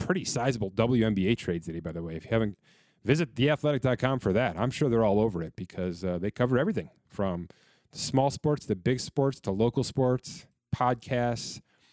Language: English